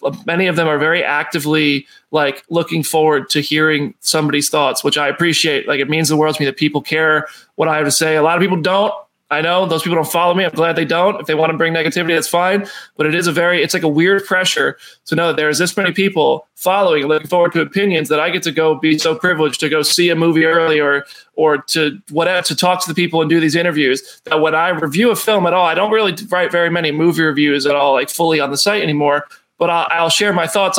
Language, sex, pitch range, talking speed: English, male, 155-190 Hz, 260 wpm